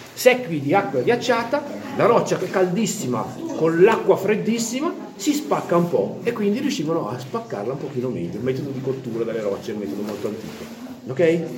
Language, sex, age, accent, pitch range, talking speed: Italian, male, 40-59, native, 145-230 Hz, 185 wpm